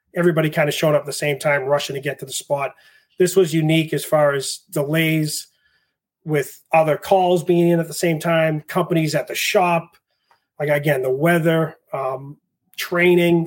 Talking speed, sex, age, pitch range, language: 185 wpm, male, 30-49, 145-175 Hz, English